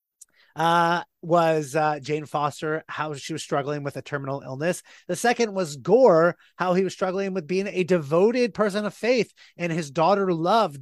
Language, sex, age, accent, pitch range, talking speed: English, male, 30-49, American, 155-185 Hz, 175 wpm